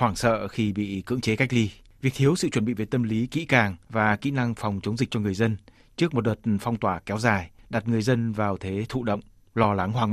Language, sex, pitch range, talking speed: Vietnamese, male, 105-125 Hz, 260 wpm